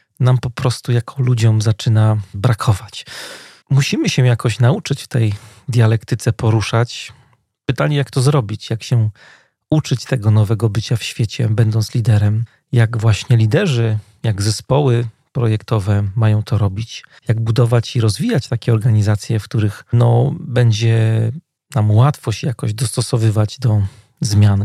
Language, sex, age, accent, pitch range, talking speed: Polish, male, 40-59, native, 110-130 Hz, 130 wpm